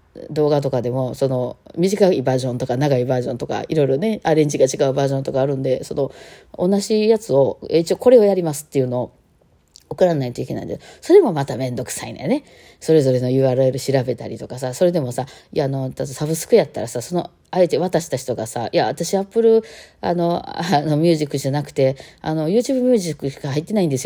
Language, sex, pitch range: Japanese, female, 125-170 Hz